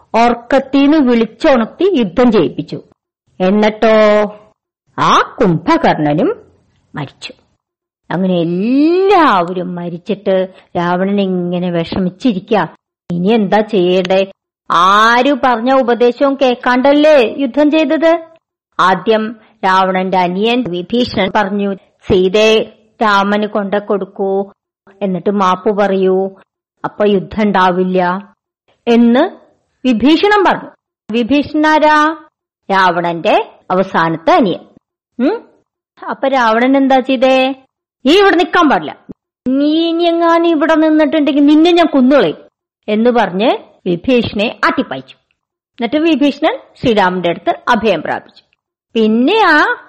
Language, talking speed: Malayalam, 80 wpm